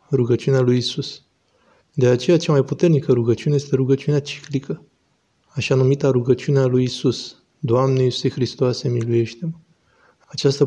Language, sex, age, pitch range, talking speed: Romanian, male, 20-39, 125-140 Hz, 125 wpm